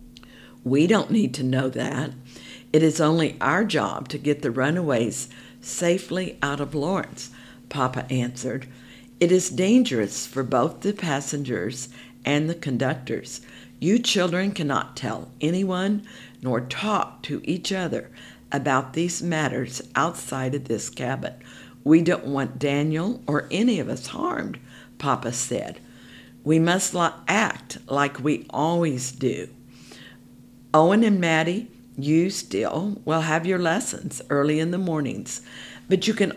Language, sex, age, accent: English, female, 60-79, American